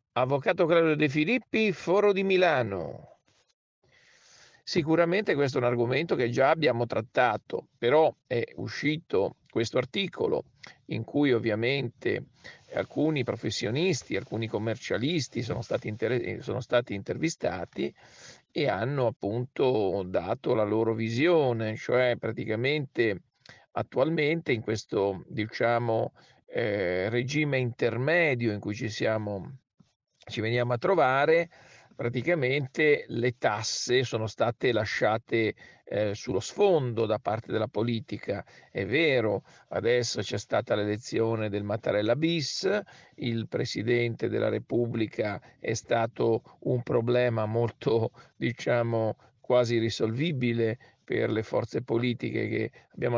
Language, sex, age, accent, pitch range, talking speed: Italian, male, 50-69, native, 115-135 Hz, 110 wpm